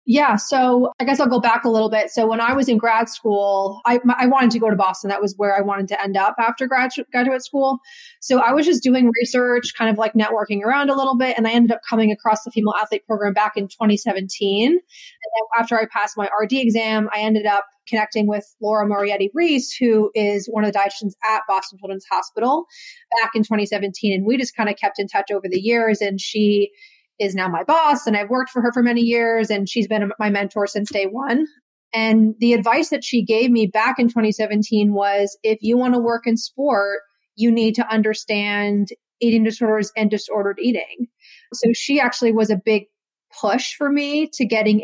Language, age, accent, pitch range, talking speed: English, 20-39, American, 205-240 Hz, 220 wpm